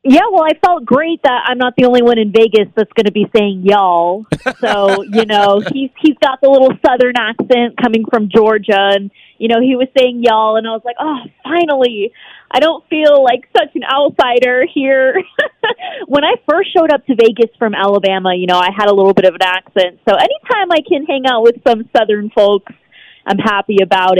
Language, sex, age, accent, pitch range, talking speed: English, female, 30-49, American, 200-260 Hz, 210 wpm